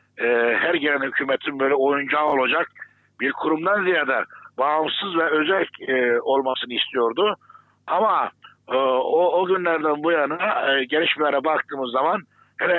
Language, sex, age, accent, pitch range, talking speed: German, male, 60-79, Turkish, 130-160 Hz, 130 wpm